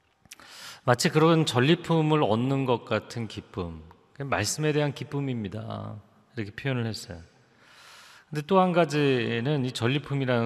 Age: 30-49